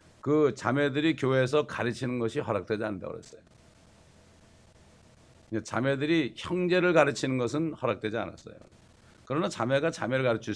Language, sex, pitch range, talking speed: English, male, 110-145 Hz, 100 wpm